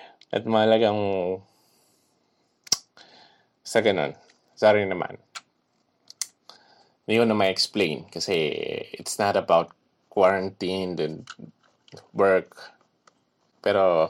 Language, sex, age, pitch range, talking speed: Filipino, male, 20-39, 95-115 Hz, 75 wpm